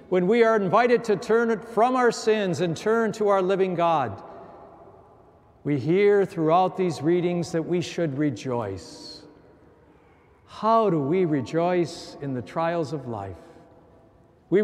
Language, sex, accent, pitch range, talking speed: English, male, American, 140-185 Hz, 140 wpm